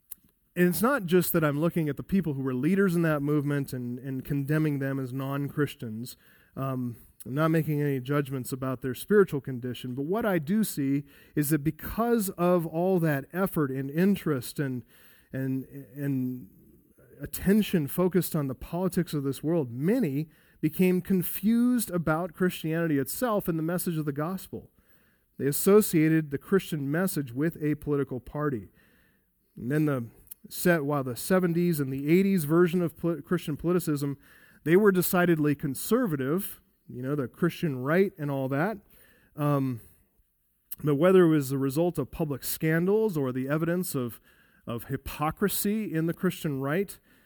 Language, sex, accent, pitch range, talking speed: English, male, American, 140-180 Hz, 160 wpm